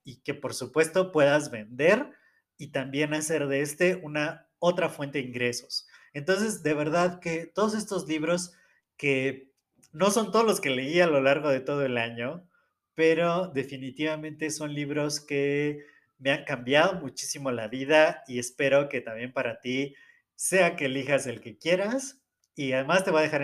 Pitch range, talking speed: 135-175 Hz, 170 wpm